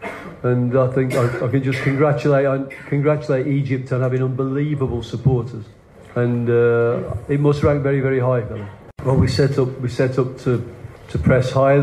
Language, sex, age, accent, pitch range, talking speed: English, male, 40-59, British, 125-140 Hz, 180 wpm